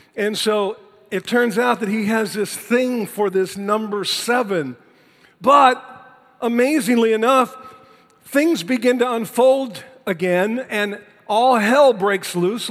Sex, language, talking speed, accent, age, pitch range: male, English, 125 wpm, American, 50-69, 170-240 Hz